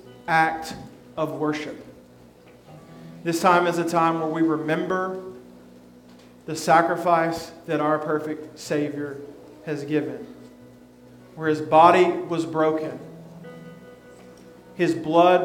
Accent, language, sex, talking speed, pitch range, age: American, English, male, 100 wpm, 145-185 Hz, 40-59